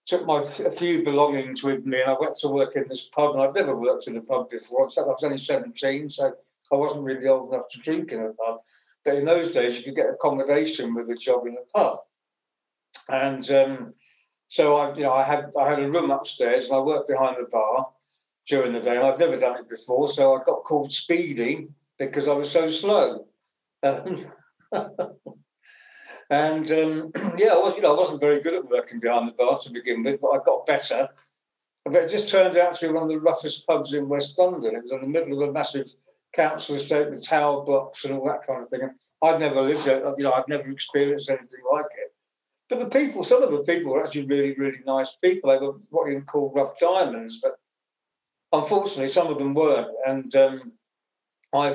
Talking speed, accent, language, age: 220 wpm, British, English, 40-59